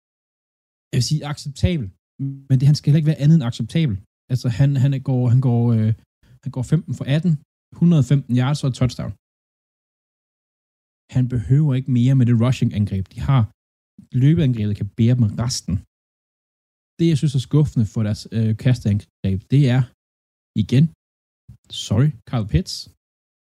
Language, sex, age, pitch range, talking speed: Danish, male, 20-39, 105-135 Hz, 150 wpm